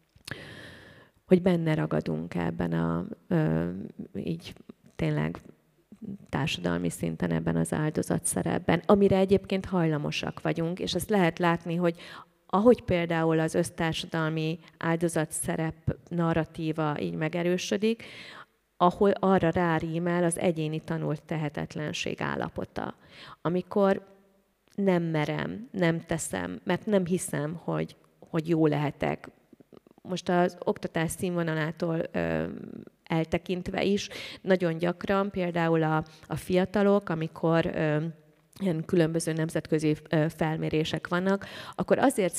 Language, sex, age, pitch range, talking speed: Hungarian, female, 30-49, 155-185 Hz, 100 wpm